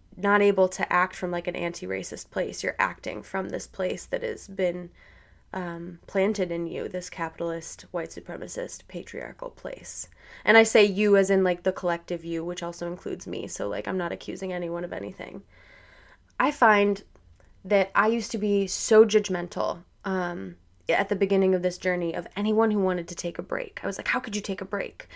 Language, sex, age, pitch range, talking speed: English, female, 20-39, 180-215 Hz, 195 wpm